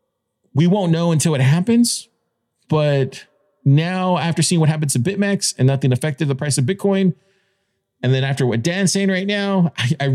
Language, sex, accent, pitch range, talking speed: English, male, American, 115-155 Hz, 185 wpm